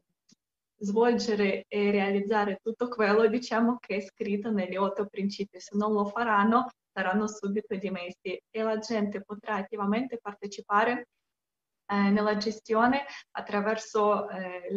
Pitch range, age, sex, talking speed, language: 200-230 Hz, 20-39, female, 120 wpm, Italian